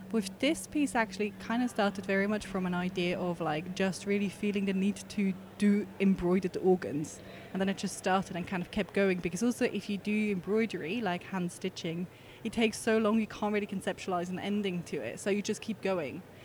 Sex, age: female, 20-39